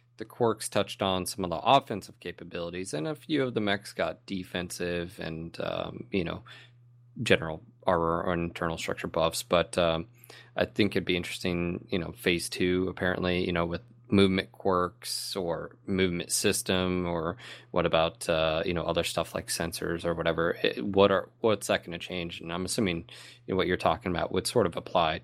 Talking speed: 190 wpm